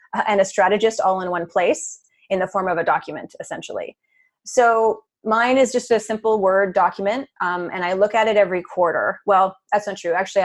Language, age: English, 20-39